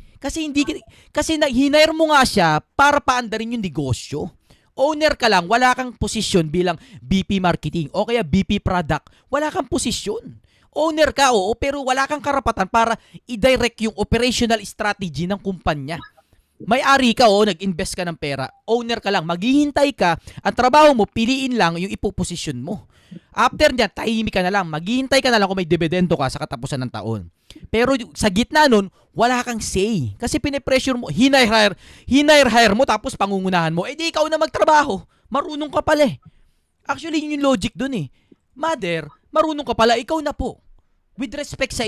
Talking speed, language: 175 wpm, Filipino